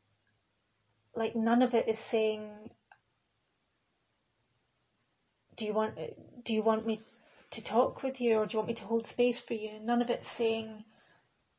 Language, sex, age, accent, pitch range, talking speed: English, female, 30-49, British, 215-230 Hz, 160 wpm